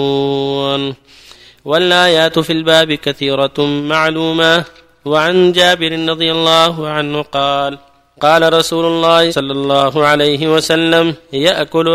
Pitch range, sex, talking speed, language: 140-165 Hz, male, 95 wpm, Arabic